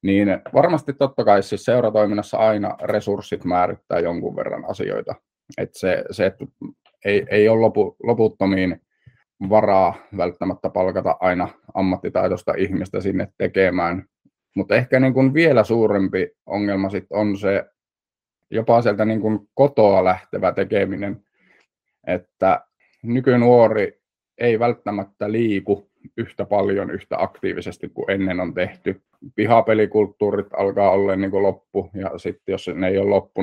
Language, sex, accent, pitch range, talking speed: Finnish, male, native, 95-105 Hz, 125 wpm